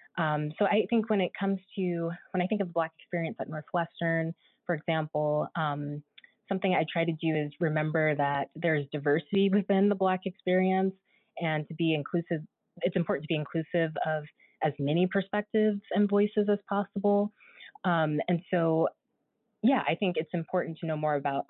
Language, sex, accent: English, female, American